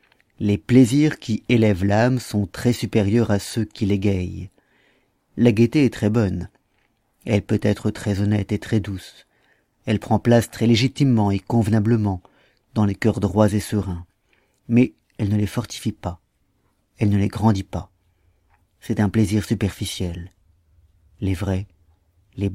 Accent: French